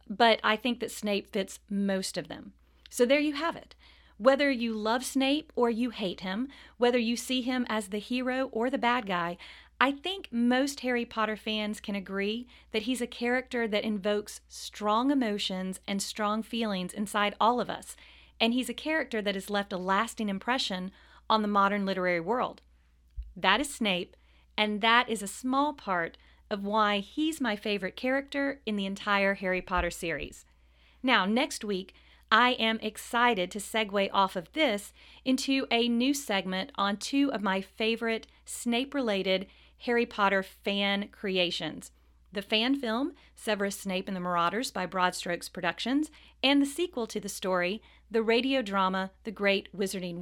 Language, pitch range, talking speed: English, 195-245 Hz, 165 wpm